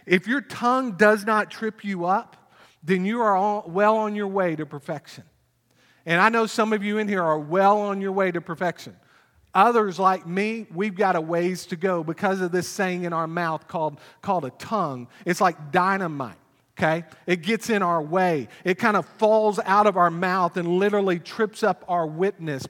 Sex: male